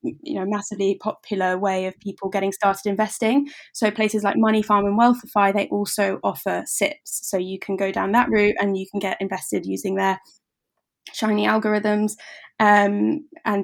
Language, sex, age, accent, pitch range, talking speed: English, female, 20-39, British, 195-220 Hz, 170 wpm